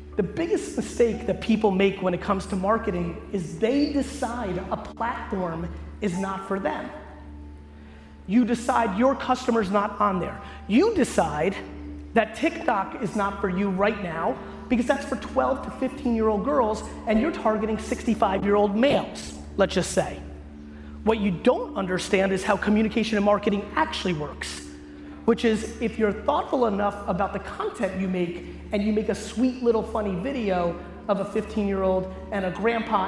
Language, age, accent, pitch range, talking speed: English, 30-49, American, 180-235 Hz, 170 wpm